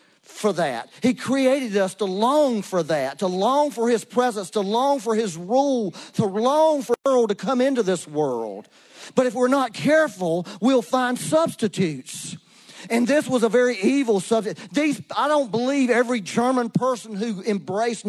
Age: 40-59